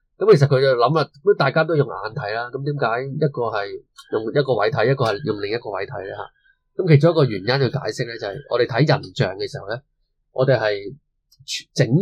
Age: 20-39